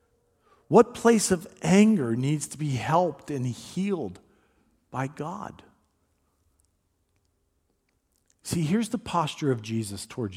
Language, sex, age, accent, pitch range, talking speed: English, male, 50-69, American, 95-145 Hz, 110 wpm